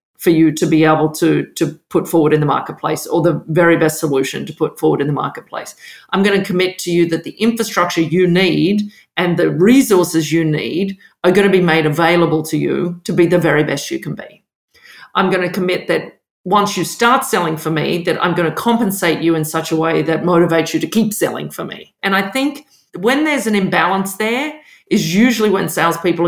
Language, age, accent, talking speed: English, 50-69, Australian, 220 wpm